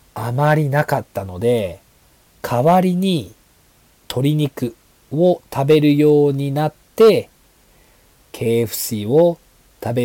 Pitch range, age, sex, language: 115-160 Hz, 40-59, male, Japanese